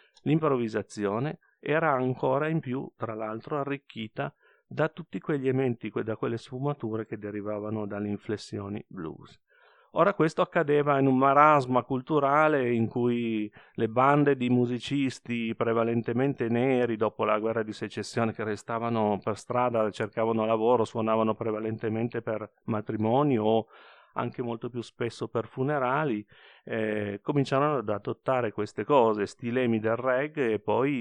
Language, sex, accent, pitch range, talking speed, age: Italian, male, native, 110-140 Hz, 130 wpm, 40-59